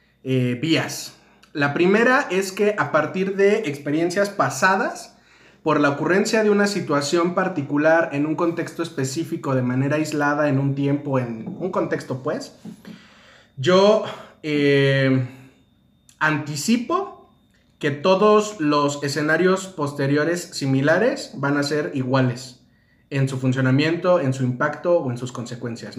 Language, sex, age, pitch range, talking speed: Spanish, male, 30-49, 130-165 Hz, 125 wpm